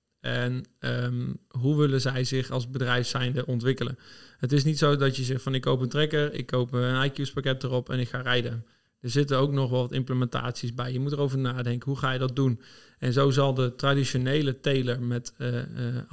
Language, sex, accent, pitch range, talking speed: Dutch, male, Dutch, 125-140 Hz, 210 wpm